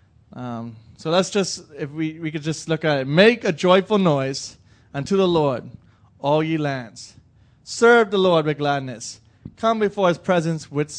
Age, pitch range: 30-49, 130-180 Hz